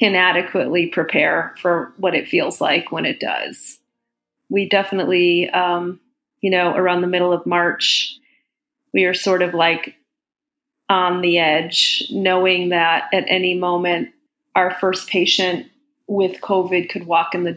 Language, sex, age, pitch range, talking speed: English, female, 30-49, 180-200 Hz, 145 wpm